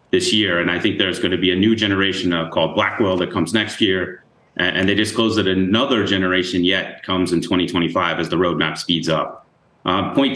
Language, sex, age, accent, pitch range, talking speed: English, male, 30-49, American, 90-110 Hz, 210 wpm